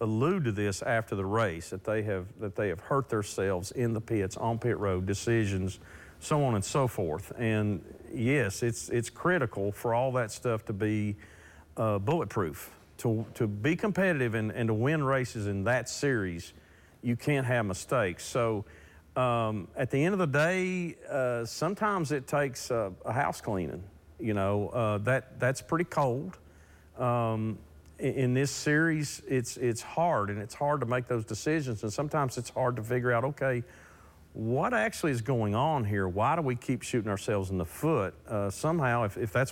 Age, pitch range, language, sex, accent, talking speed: 50-69, 100-135 Hz, English, male, American, 180 wpm